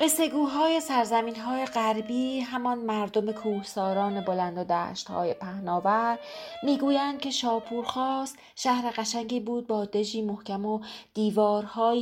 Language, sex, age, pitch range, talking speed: Persian, female, 30-49, 190-240 Hz, 105 wpm